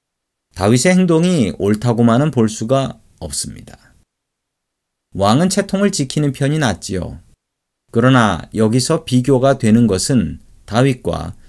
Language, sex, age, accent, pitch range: Korean, male, 40-59, native, 105-145 Hz